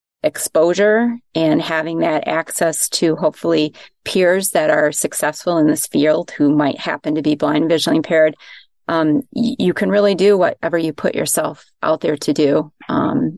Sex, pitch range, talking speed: female, 155-190 Hz, 170 wpm